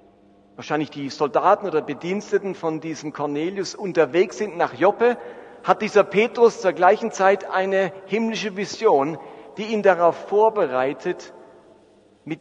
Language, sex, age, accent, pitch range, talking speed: German, male, 50-69, German, 155-210 Hz, 125 wpm